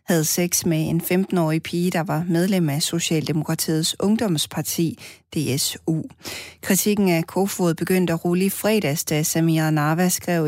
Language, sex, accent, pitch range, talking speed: Danish, female, native, 150-175 Hz, 145 wpm